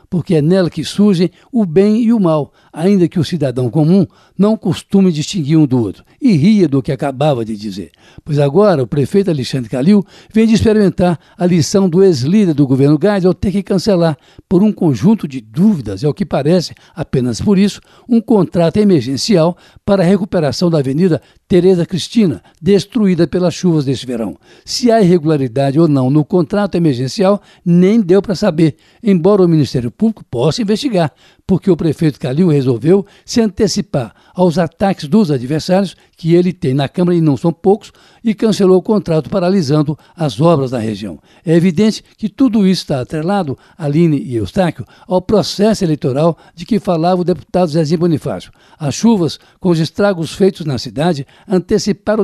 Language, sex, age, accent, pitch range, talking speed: Portuguese, male, 60-79, Brazilian, 150-200 Hz, 175 wpm